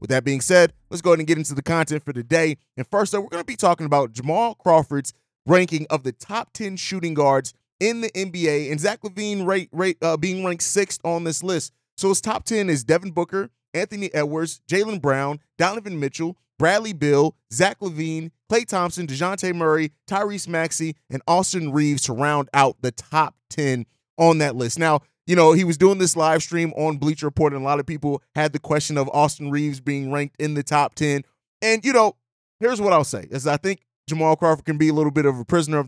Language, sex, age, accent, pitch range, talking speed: English, male, 30-49, American, 145-180 Hz, 215 wpm